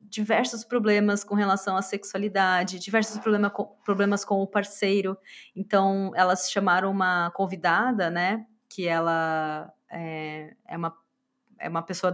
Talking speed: 135 wpm